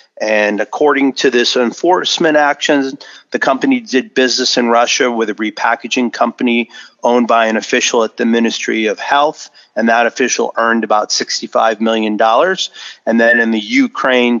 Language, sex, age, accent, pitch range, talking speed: English, male, 40-59, American, 115-130 Hz, 155 wpm